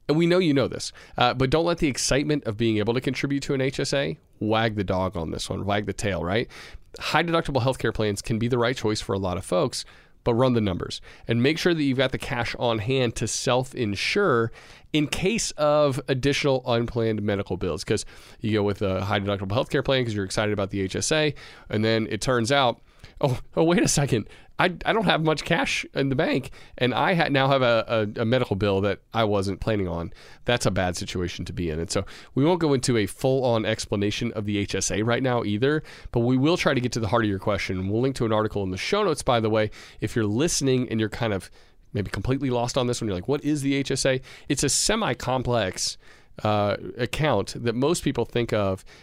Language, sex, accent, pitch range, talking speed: English, male, American, 105-135 Hz, 235 wpm